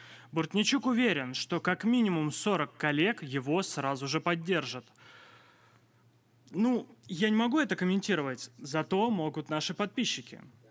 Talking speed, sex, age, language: 120 wpm, male, 20-39, Russian